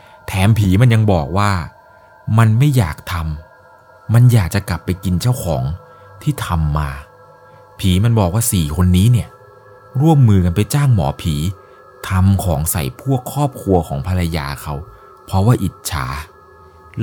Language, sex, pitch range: Thai, male, 80-110 Hz